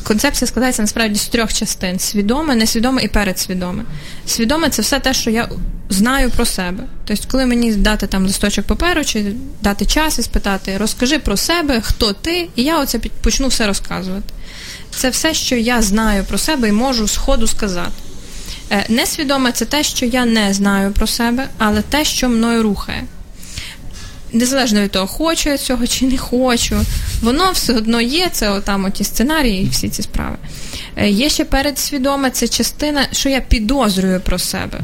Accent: native